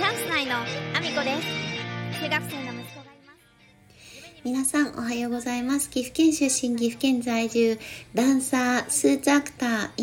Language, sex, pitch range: Japanese, female, 215-290 Hz